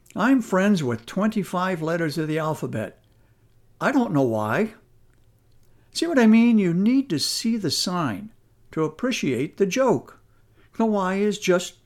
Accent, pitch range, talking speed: American, 130-200 Hz, 150 wpm